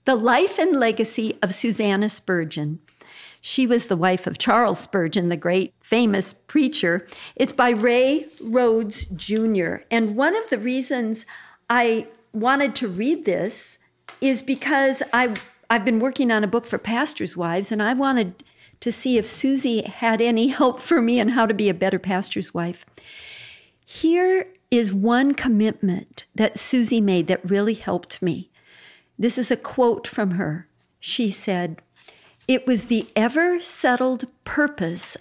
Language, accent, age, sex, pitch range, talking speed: English, American, 50-69, female, 195-255 Hz, 150 wpm